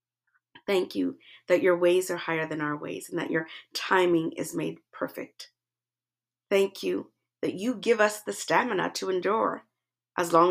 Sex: female